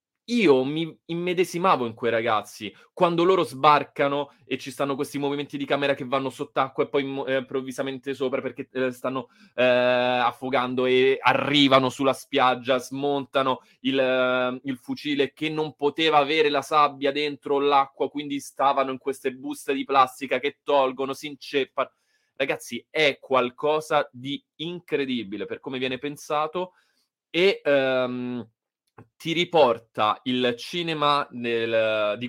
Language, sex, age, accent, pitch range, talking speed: Italian, male, 20-39, native, 125-145 Hz, 135 wpm